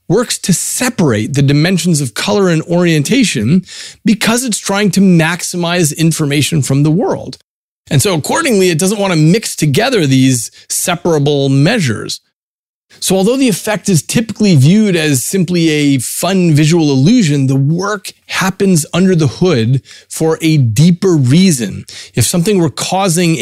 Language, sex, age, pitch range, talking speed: English, male, 30-49, 140-190 Hz, 145 wpm